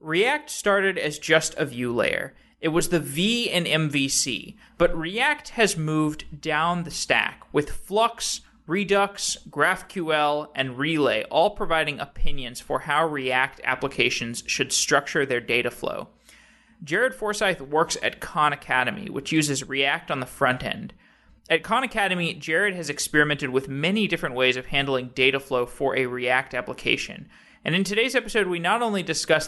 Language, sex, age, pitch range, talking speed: English, male, 30-49, 130-175 Hz, 155 wpm